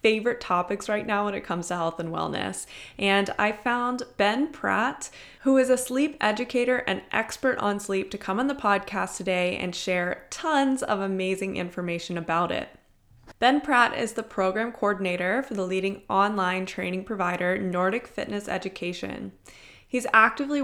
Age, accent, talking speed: 20-39, American, 165 wpm